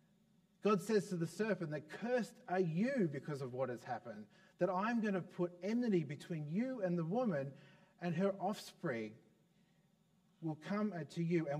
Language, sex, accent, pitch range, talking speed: English, male, Australian, 155-190 Hz, 170 wpm